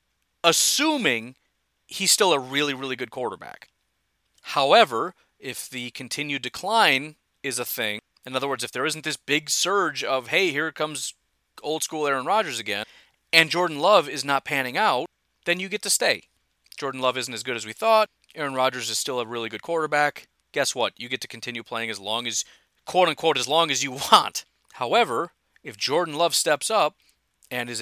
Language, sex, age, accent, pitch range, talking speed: English, male, 40-59, American, 120-155 Hz, 185 wpm